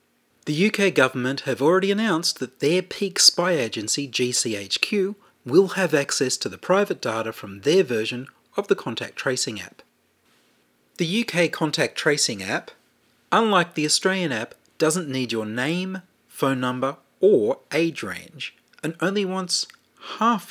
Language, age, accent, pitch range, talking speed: English, 40-59, Australian, 130-190 Hz, 145 wpm